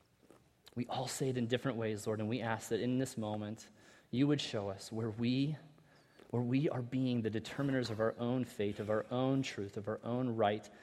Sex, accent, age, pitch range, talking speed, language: male, American, 30-49, 115-145 Hz, 215 wpm, English